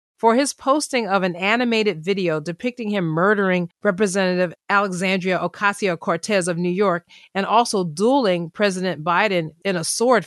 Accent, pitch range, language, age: American, 170-205 Hz, English, 40-59